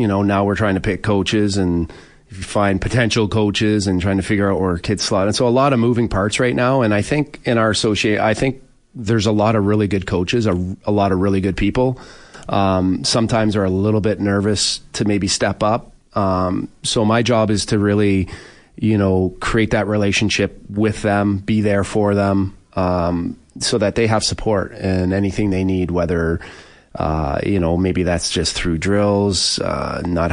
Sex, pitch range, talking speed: male, 90-110 Hz, 200 wpm